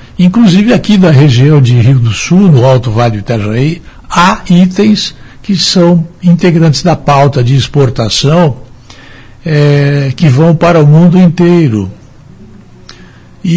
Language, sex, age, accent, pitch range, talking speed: Portuguese, male, 60-79, Brazilian, 120-160 Hz, 135 wpm